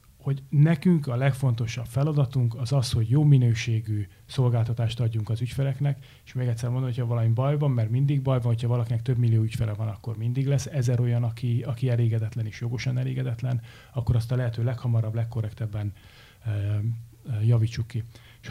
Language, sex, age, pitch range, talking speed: Hungarian, male, 30-49, 115-135 Hz, 170 wpm